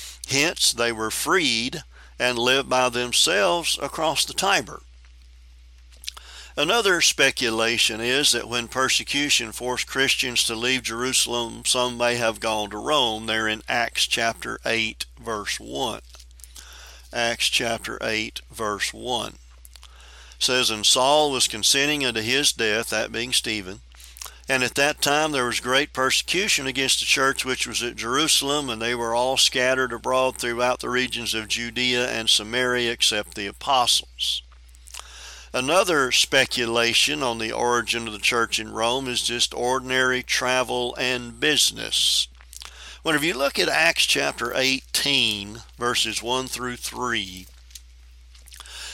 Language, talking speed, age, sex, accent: English, 130 wpm, 50-69, male, American